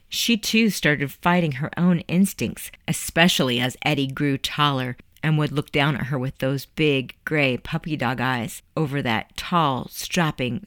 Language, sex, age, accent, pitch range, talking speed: English, female, 40-59, American, 135-185 Hz, 165 wpm